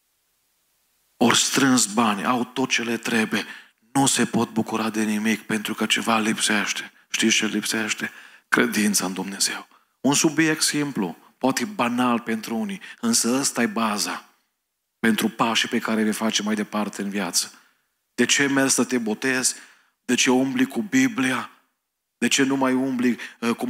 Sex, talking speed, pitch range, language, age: male, 160 wpm, 115-130 Hz, Romanian, 40-59